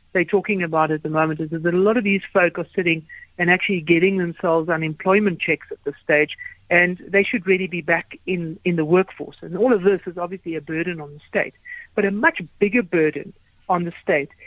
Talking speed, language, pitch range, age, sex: 220 wpm, English, 165-205 Hz, 60-79, female